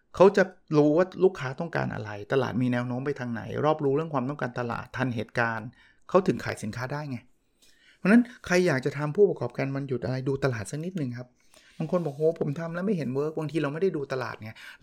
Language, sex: Thai, male